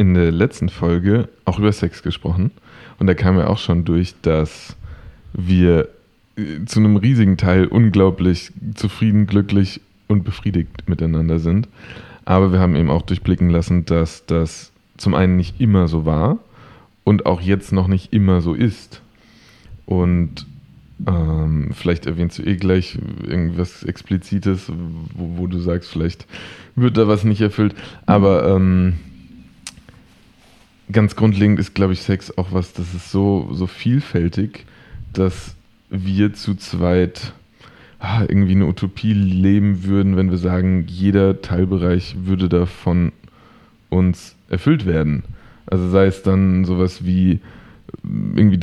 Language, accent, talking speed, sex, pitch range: German, German, 140 wpm, male, 90-100 Hz